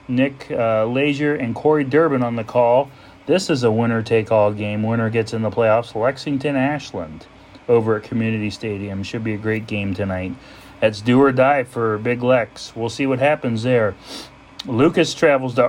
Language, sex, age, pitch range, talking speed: English, male, 30-49, 110-145 Hz, 170 wpm